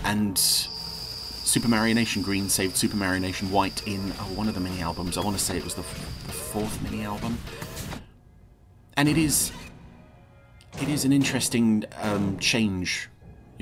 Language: English